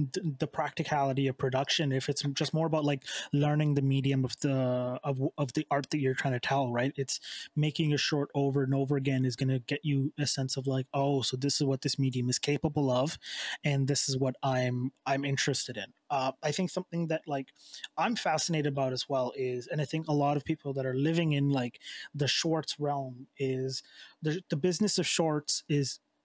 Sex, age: male, 20-39